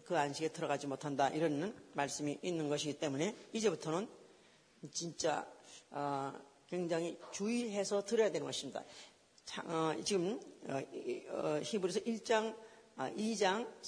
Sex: female